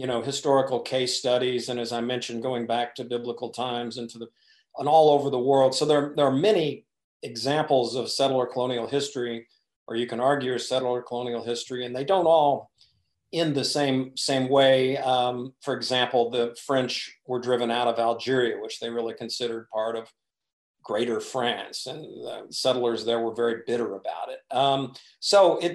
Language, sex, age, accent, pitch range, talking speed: English, male, 50-69, American, 120-140 Hz, 180 wpm